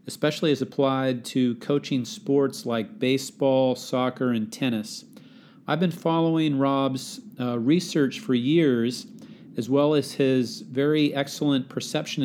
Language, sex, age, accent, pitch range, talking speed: English, male, 40-59, American, 130-145 Hz, 125 wpm